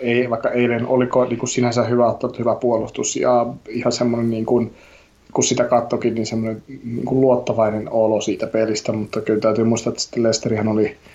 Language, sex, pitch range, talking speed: Finnish, male, 110-120 Hz, 160 wpm